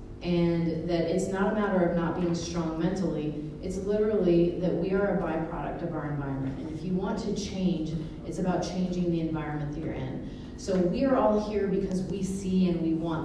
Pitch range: 165-190 Hz